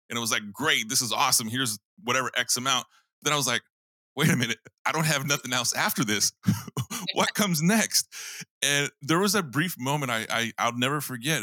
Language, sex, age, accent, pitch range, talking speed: English, male, 20-39, American, 100-140 Hz, 210 wpm